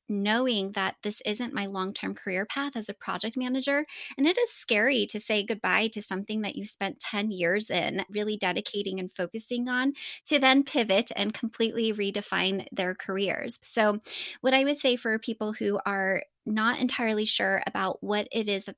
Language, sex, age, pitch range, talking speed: English, female, 20-39, 195-250 Hz, 180 wpm